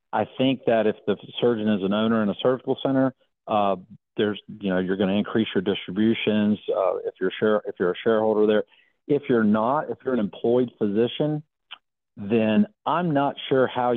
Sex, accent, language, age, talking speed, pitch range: male, American, English, 50-69, 195 wpm, 100-125 Hz